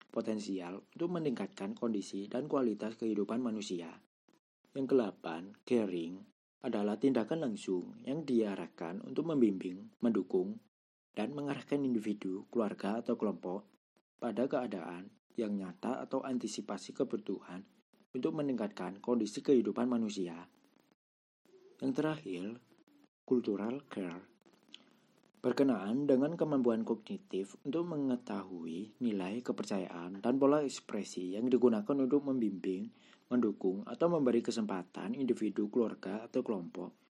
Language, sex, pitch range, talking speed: Indonesian, male, 95-135 Hz, 105 wpm